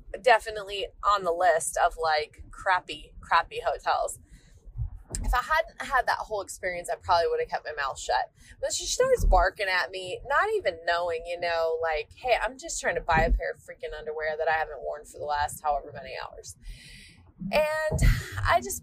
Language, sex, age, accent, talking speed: English, female, 20-39, American, 190 wpm